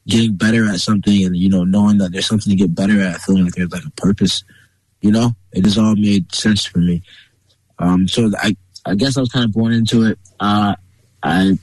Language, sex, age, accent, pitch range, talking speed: English, male, 20-39, American, 95-115 Hz, 225 wpm